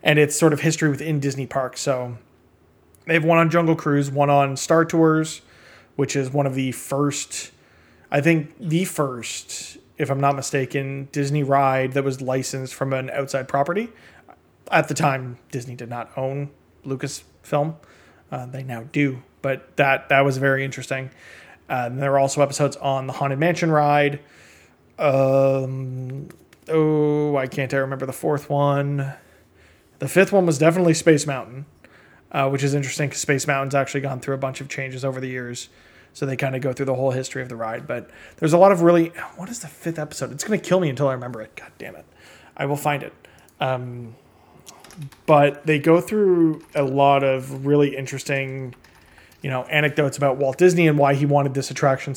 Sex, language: male, English